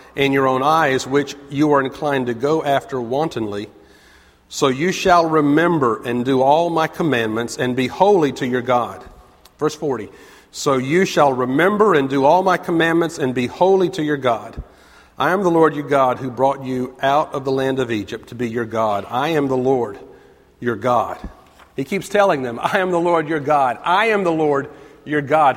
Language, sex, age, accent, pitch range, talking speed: English, male, 50-69, American, 125-160 Hz, 205 wpm